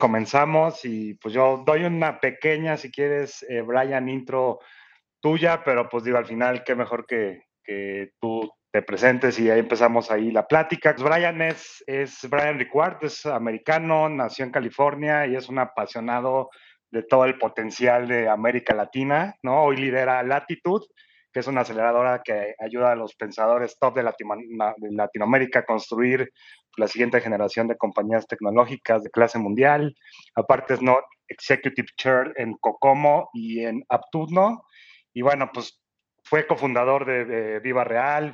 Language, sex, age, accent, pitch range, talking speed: Spanish, male, 30-49, Mexican, 115-140 Hz, 160 wpm